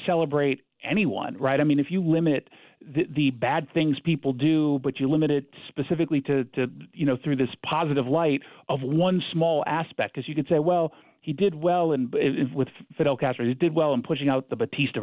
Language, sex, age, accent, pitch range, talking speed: English, male, 50-69, American, 135-165 Hz, 210 wpm